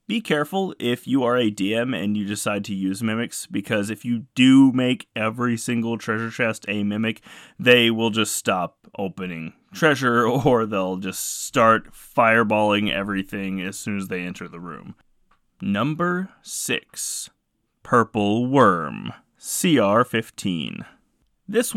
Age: 30-49